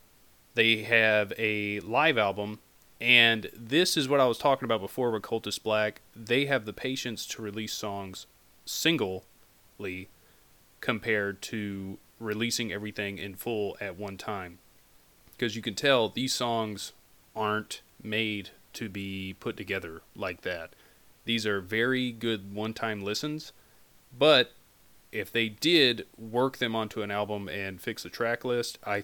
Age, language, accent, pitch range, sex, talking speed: 30-49, English, American, 105-120 Hz, male, 145 wpm